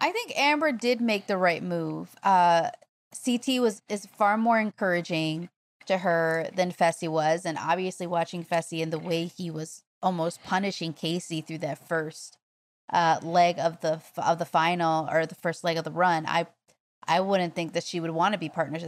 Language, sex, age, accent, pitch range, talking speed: English, female, 30-49, American, 165-210 Hz, 190 wpm